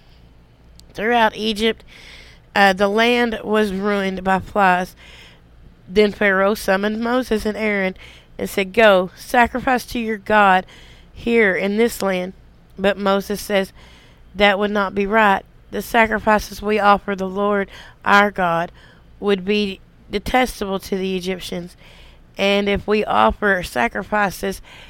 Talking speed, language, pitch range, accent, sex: 130 wpm, English, 180-210 Hz, American, female